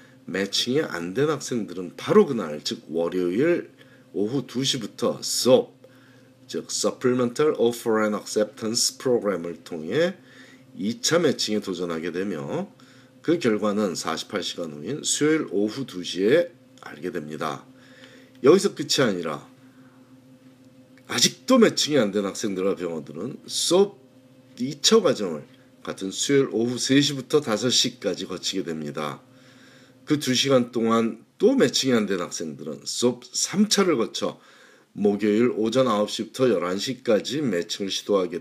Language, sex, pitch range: Korean, male, 105-130 Hz